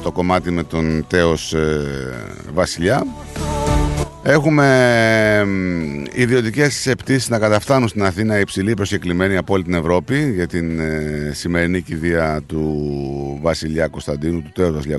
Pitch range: 85-125 Hz